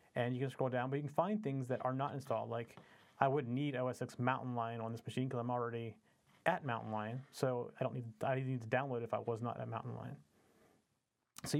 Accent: American